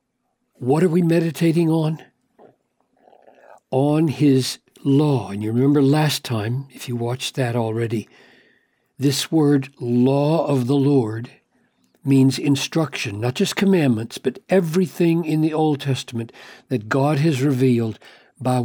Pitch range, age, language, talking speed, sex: 125-160 Hz, 60-79, English, 130 wpm, male